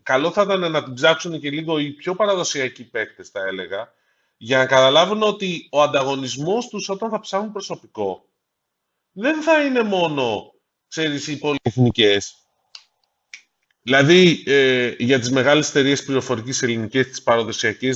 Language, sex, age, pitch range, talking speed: Greek, male, 30-49, 120-175 Hz, 140 wpm